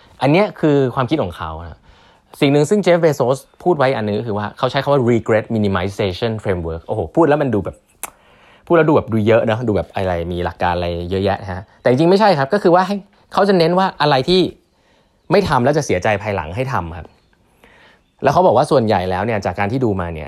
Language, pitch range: Thai, 100-140 Hz